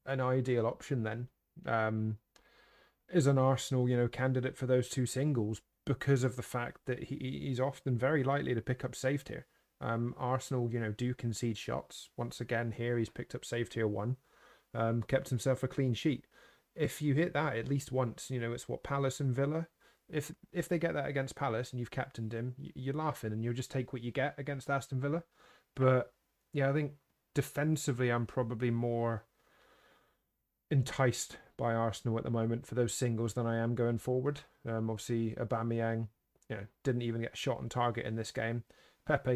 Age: 30-49